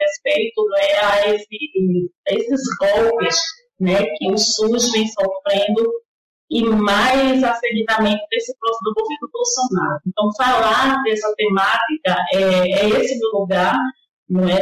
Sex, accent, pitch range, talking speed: female, Brazilian, 190-230 Hz, 130 wpm